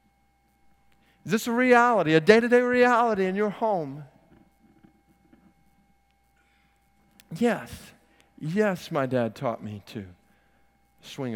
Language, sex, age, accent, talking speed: English, male, 50-69, American, 95 wpm